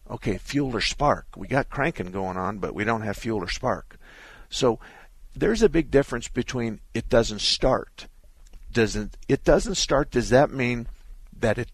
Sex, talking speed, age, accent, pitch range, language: male, 180 wpm, 50-69, American, 95-125 Hz, English